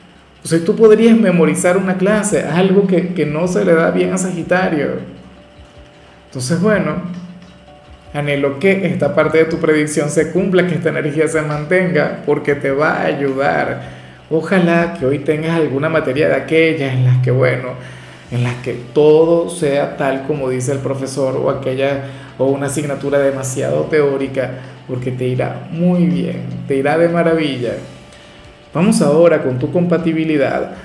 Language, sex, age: Spanish, male, 40-59